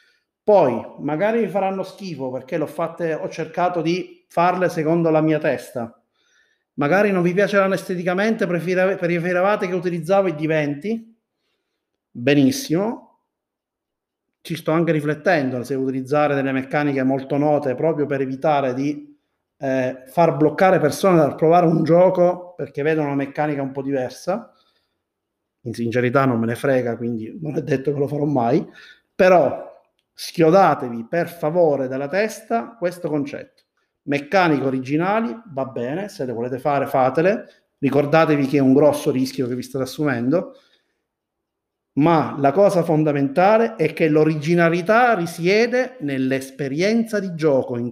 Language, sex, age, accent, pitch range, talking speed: Italian, male, 30-49, native, 135-185 Hz, 135 wpm